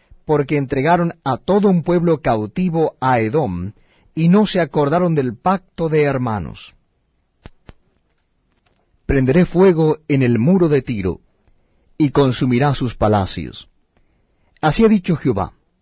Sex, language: male, Spanish